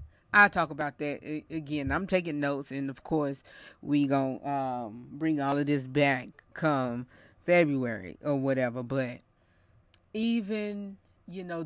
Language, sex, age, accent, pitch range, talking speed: English, female, 30-49, American, 130-165 Hz, 140 wpm